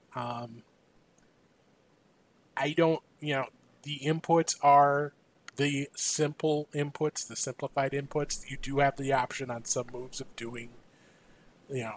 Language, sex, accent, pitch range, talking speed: English, male, American, 130-150 Hz, 125 wpm